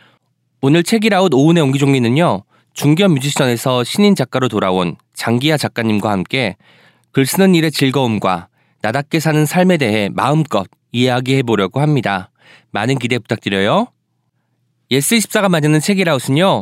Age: 20-39